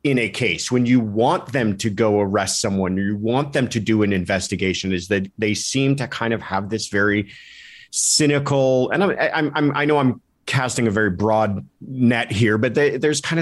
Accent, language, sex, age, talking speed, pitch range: American, English, male, 30-49, 205 wpm, 110-140 Hz